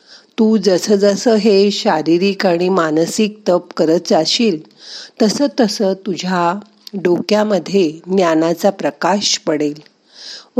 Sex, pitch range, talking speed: female, 170-225 Hz, 75 wpm